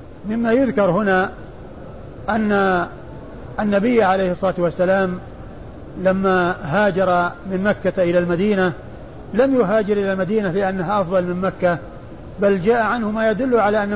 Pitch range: 180-210 Hz